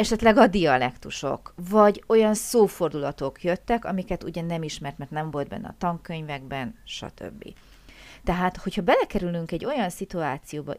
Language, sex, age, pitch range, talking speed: Hungarian, female, 30-49, 150-190 Hz, 135 wpm